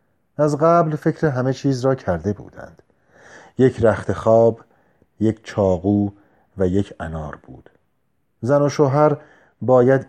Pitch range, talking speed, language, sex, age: 95-125 Hz, 125 wpm, Persian, male, 40-59